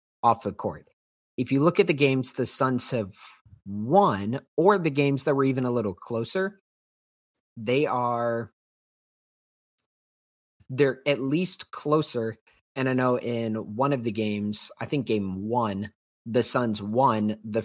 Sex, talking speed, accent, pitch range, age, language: male, 150 wpm, American, 105-140 Hz, 30-49, English